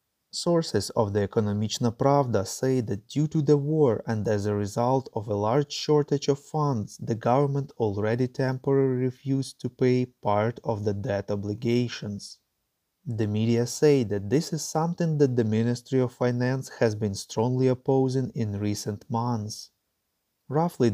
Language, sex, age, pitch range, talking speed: English, male, 30-49, 110-140 Hz, 150 wpm